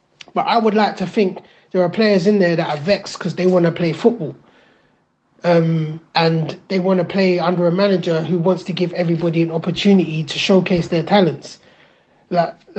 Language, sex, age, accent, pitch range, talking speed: English, male, 30-49, British, 175-205 Hz, 190 wpm